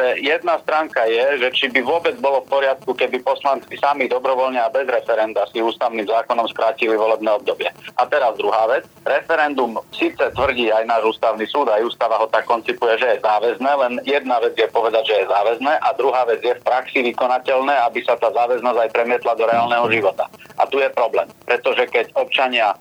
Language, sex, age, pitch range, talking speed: Slovak, male, 40-59, 120-140 Hz, 190 wpm